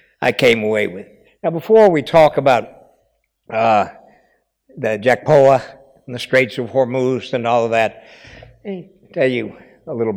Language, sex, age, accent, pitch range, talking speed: English, male, 60-79, American, 125-155 Hz, 160 wpm